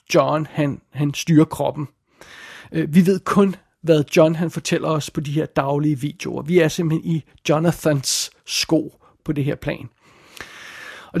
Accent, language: native, Danish